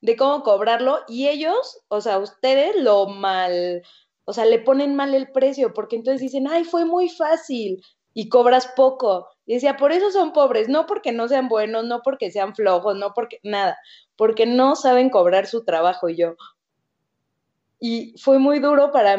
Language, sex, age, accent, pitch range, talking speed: Spanish, female, 20-39, Mexican, 195-265 Hz, 180 wpm